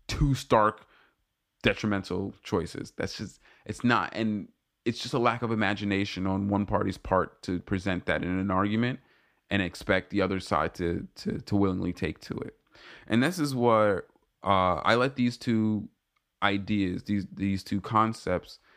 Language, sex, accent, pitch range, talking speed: English, male, American, 95-120 Hz, 160 wpm